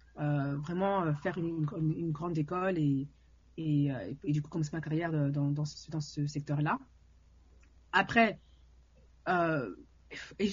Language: French